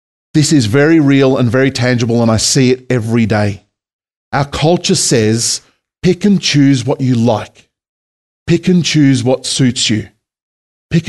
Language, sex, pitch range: English, male, 115-150 Hz